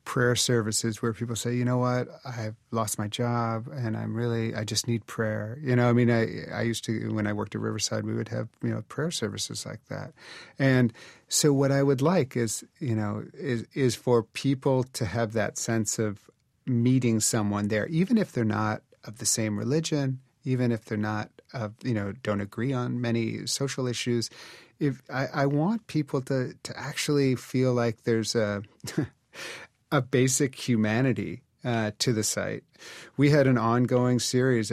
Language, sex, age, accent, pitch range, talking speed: English, male, 40-59, American, 115-135 Hz, 185 wpm